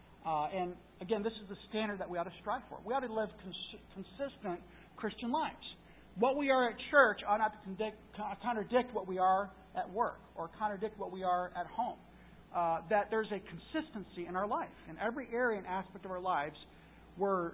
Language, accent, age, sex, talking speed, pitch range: English, American, 50-69, male, 200 wpm, 170-220 Hz